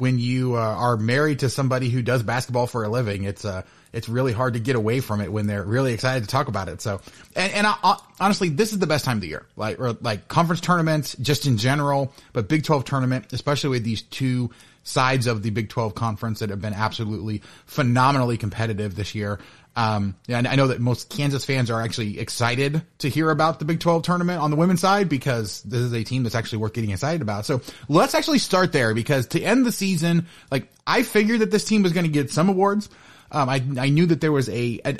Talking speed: 240 wpm